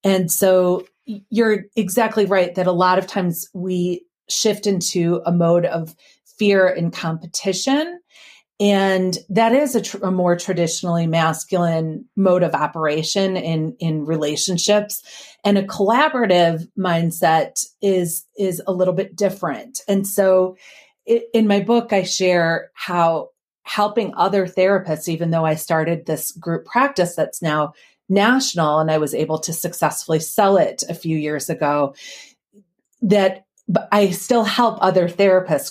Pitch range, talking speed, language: 165-200 Hz, 140 wpm, English